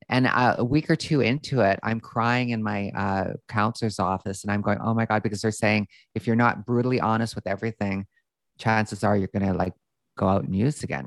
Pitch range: 105-120 Hz